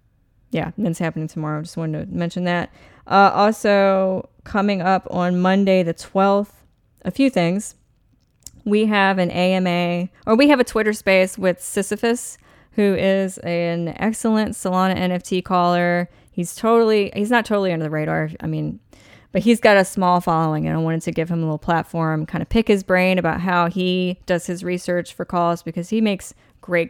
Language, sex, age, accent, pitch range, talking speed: English, female, 10-29, American, 170-205 Hz, 180 wpm